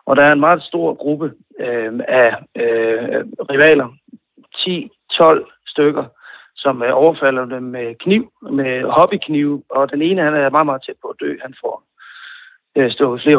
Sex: male